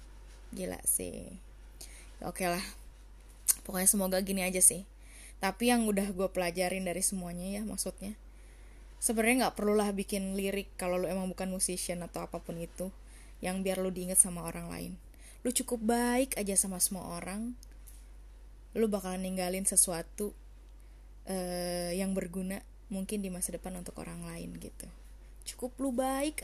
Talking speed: 150 wpm